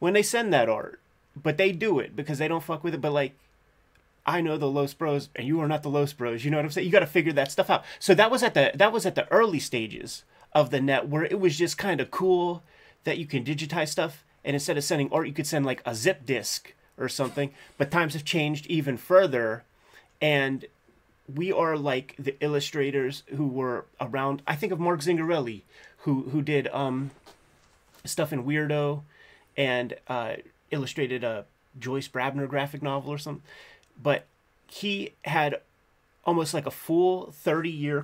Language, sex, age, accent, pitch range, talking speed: English, male, 30-49, American, 135-160 Hz, 195 wpm